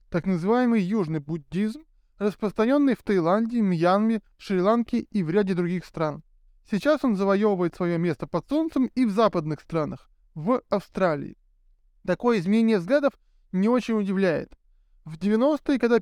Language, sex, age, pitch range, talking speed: Russian, male, 20-39, 185-235 Hz, 135 wpm